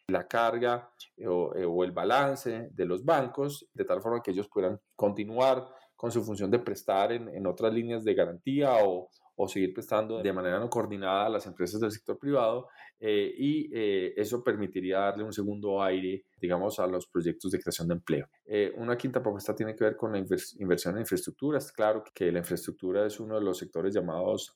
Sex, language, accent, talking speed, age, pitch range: male, Spanish, Colombian, 205 wpm, 20-39, 95-115 Hz